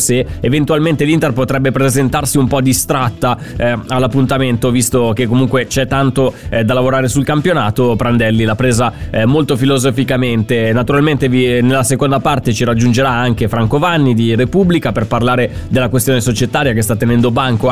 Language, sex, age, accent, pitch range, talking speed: Italian, male, 20-39, native, 125-150 Hz, 160 wpm